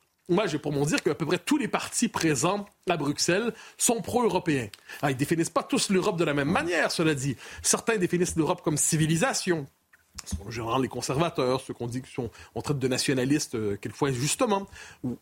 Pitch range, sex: 150-220 Hz, male